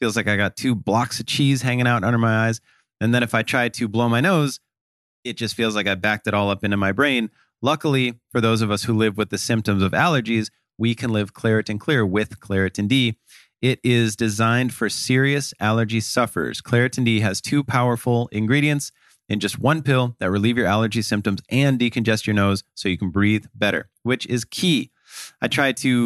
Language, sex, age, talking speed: English, male, 30-49, 210 wpm